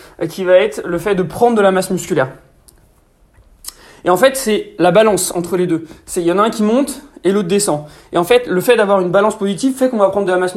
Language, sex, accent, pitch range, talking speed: French, male, French, 170-205 Hz, 265 wpm